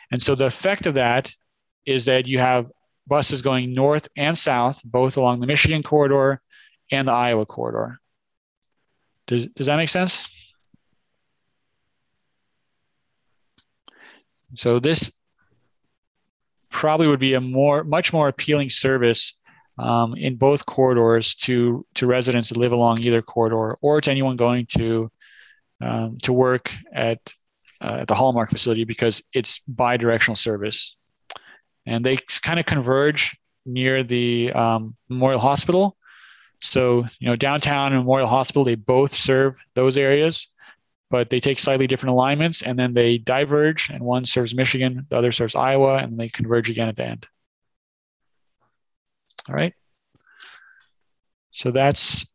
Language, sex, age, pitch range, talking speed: English, male, 30-49, 120-140 Hz, 140 wpm